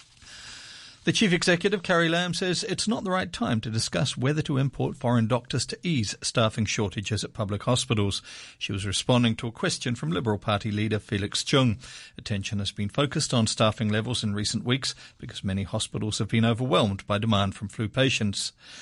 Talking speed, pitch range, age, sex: 185 wpm, 105-130 Hz, 50-69, male